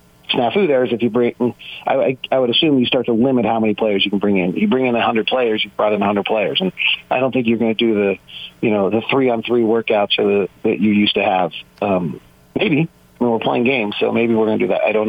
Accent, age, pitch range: American, 40-59, 105-125 Hz